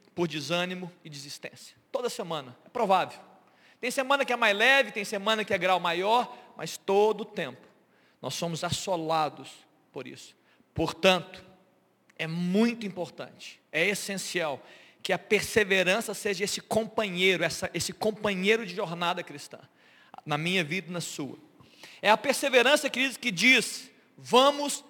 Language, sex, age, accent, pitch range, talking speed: Portuguese, male, 40-59, Brazilian, 190-275 Hz, 140 wpm